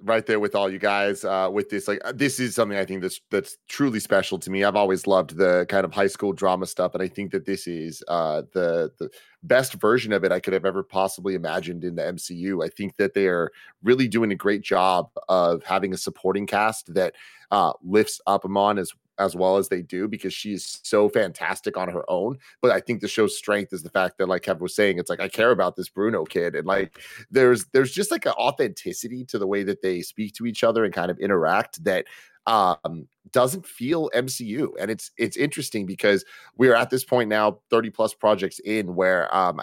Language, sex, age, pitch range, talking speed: English, male, 30-49, 95-110 Hz, 230 wpm